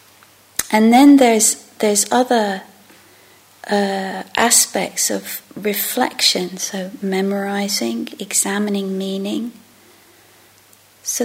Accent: British